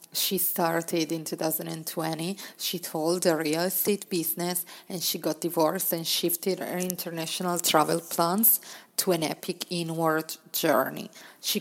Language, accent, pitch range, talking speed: English, Italian, 160-185 Hz, 135 wpm